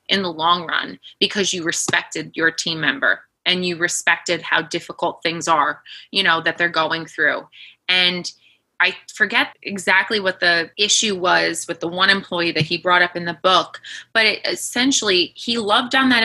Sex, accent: female, American